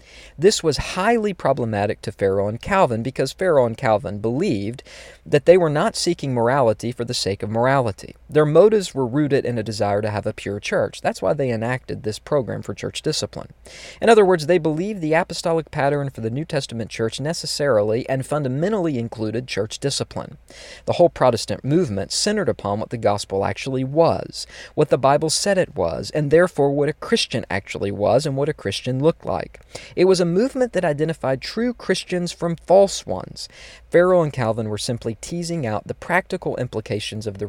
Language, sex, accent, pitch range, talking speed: English, male, American, 110-165 Hz, 185 wpm